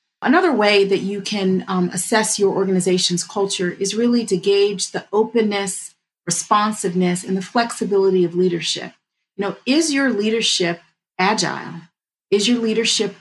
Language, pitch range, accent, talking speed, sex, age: English, 175-215 Hz, American, 140 wpm, female, 30-49